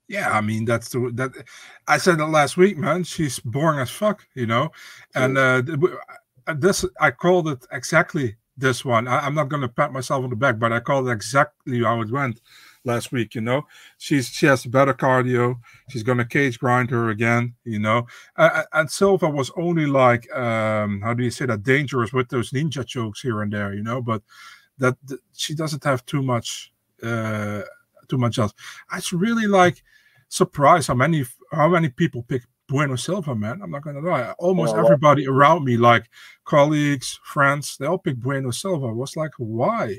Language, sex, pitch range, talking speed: English, male, 120-160 Hz, 190 wpm